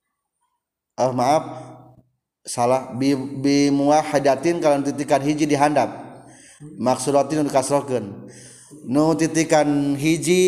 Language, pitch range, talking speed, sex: Indonesian, 125-170 Hz, 120 wpm, male